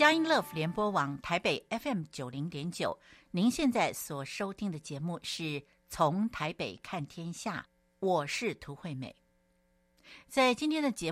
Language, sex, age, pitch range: Chinese, female, 60-79, 150-215 Hz